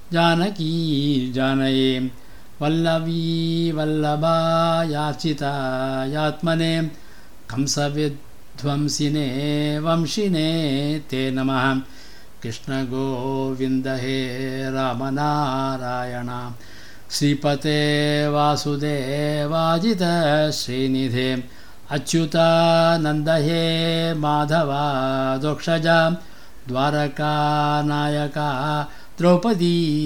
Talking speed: 50 wpm